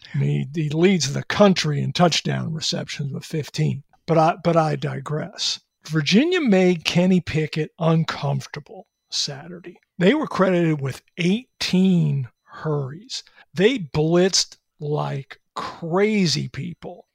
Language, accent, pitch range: English, American, 150-190 Hz